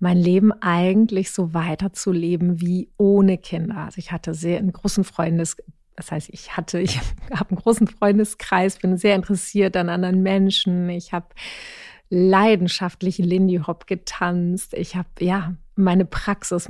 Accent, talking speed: German, 145 wpm